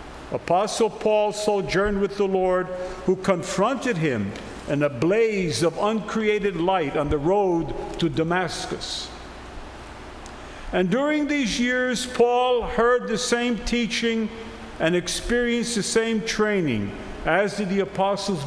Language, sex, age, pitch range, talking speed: English, male, 50-69, 170-230 Hz, 125 wpm